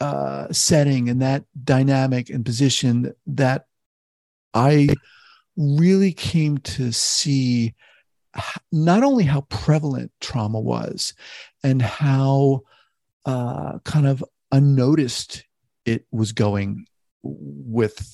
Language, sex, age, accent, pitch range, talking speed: English, male, 50-69, American, 115-150 Hz, 100 wpm